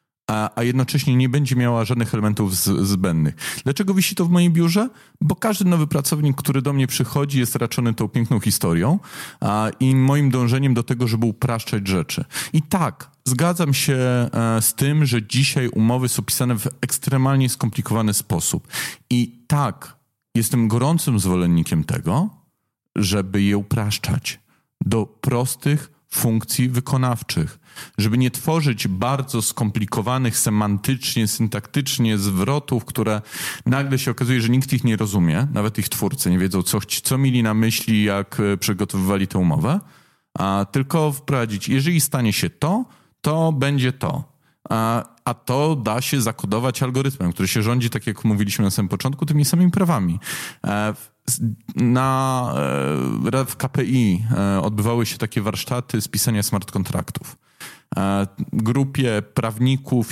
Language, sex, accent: Polish, male, native